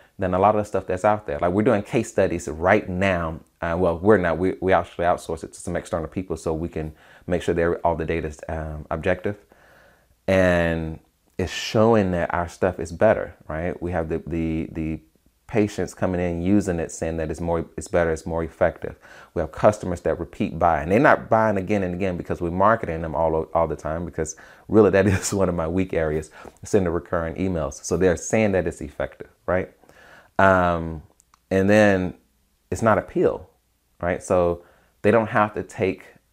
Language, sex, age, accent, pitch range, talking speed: English, male, 30-49, American, 80-100 Hz, 200 wpm